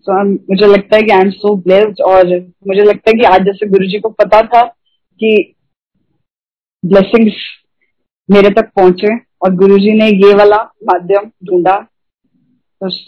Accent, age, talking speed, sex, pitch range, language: native, 20-39, 155 wpm, female, 190-220 Hz, Hindi